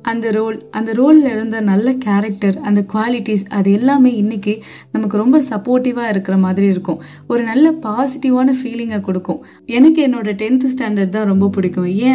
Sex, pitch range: female, 200-255 Hz